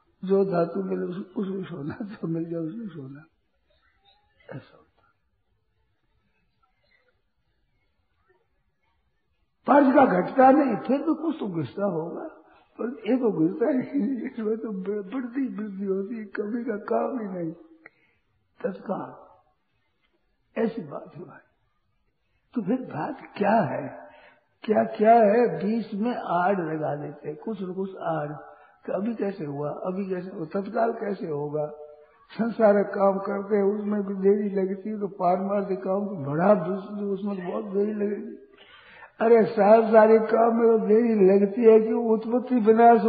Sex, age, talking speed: male, 60-79, 145 wpm